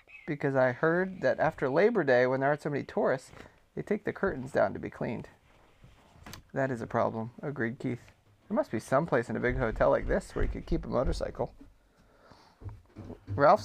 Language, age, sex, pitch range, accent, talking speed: English, 30-49, male, 115-165 Hz, American, 200 wpm